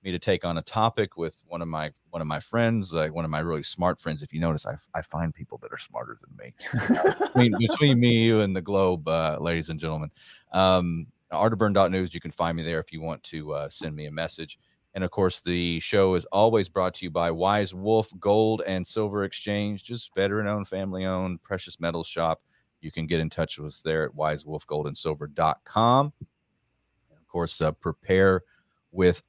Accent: American